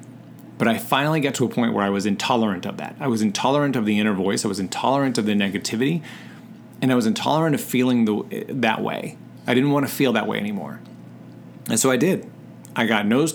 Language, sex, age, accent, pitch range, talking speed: English, male, 30-49, American, 100-140 Hz, 225 wpm